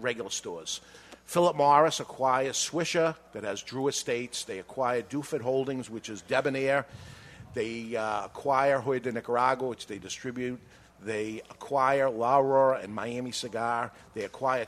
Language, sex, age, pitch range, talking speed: English, male, 50-69, 120-150 Hz, 145 wpm